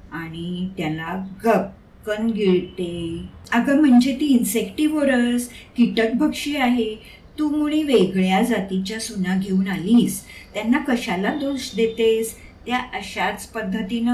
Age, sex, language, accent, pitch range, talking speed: 50-69, female, Marathi, native, 180-235 Hz, 50 wpm